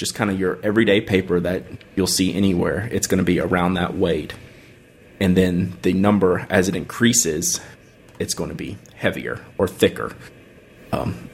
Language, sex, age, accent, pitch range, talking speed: English, male, 30-49, American, 90-105 Hz, 170 wpm